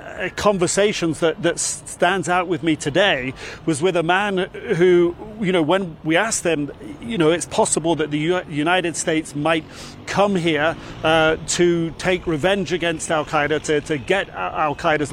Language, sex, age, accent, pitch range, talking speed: English, male, 40-59, British, 155-180 Hz, 160 wpm